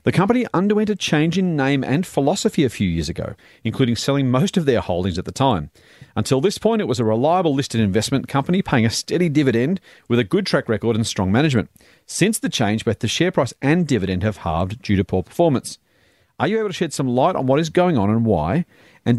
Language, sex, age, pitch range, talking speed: English, male, 40-59, 110-160 Hz, 230 wpm